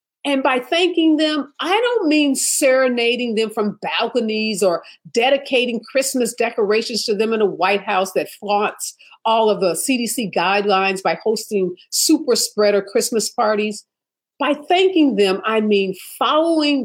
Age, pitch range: 50-69, 195-270 Hz